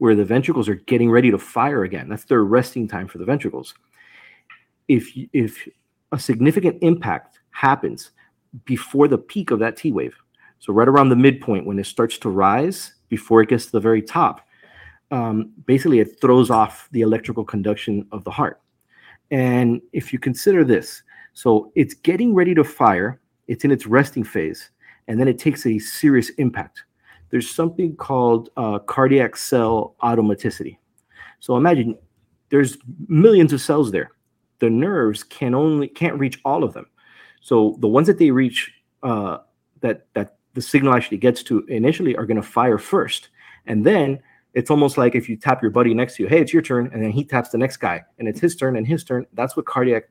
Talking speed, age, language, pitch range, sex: 185 wpm, 40-59, English, 115-145 Hz, male